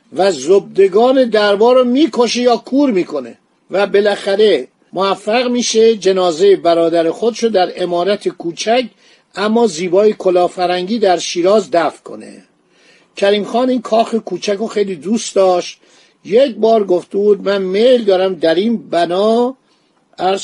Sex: male